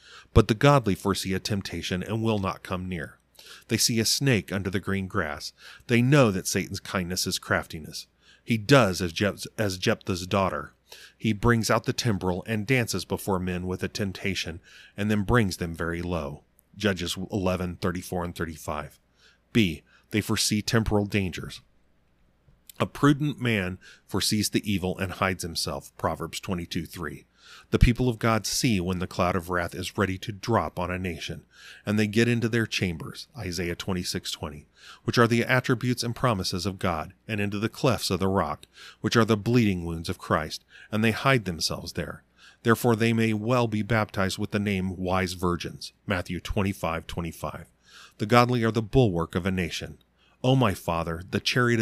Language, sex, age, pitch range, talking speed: English, male, 30-49, 90-115 Hz, 175 wpm